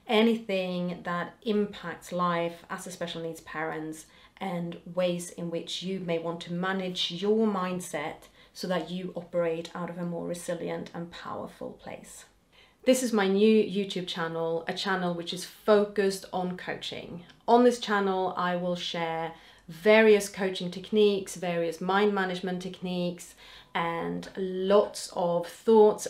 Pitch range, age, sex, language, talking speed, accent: 175-200 Hz, 30-49, female, English, 145 wpm, British